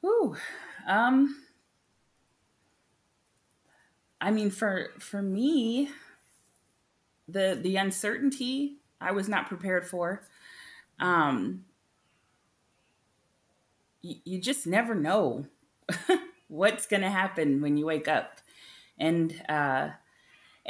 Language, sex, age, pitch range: English, female, 30-49, 155-220 Hz